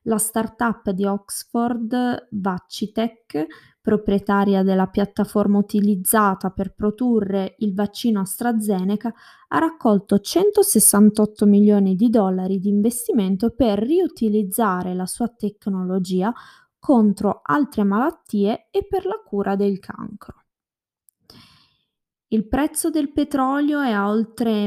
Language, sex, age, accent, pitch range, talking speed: Italian, female, 20-39, native, 195-240 Hz, 105 wpm